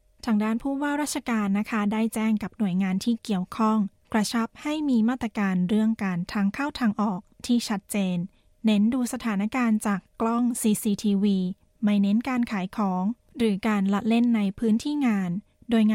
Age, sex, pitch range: 20-39, female, 195-225 Hz